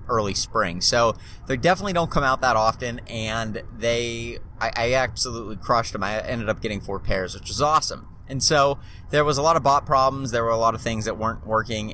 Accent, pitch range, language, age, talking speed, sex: American, 100-125 Hz, English, 20-39, 220 wpm, male